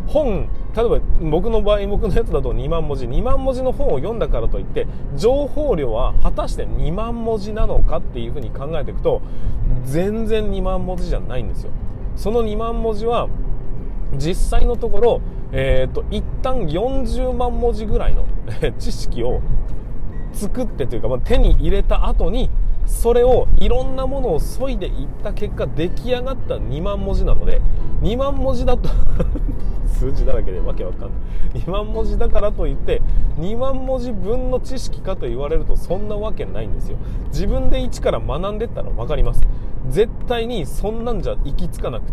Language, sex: Japanese, male